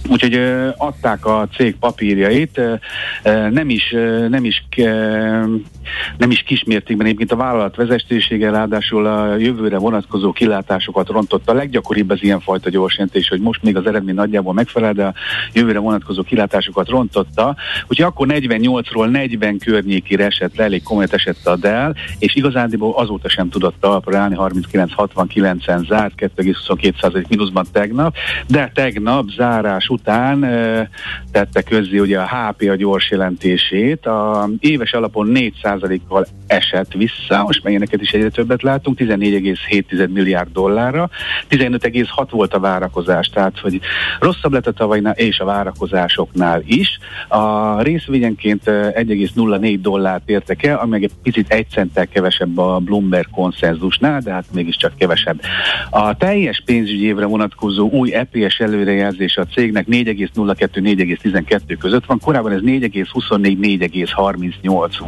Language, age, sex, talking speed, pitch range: Hungarian, 50-69, male, 135 wpm, 95-115 Hz